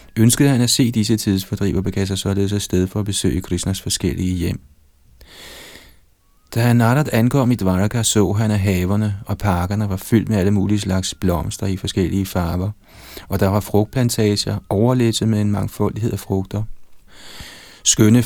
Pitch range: 95-110 Hz